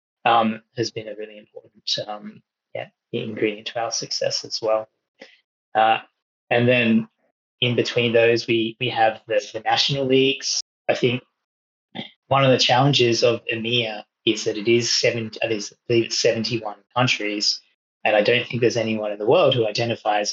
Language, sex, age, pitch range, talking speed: English, male, 20-39, 110-135 Hz, 165 wpm